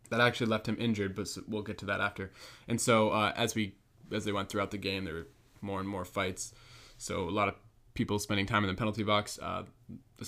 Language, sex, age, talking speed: English, male, 20-39, 240 wpm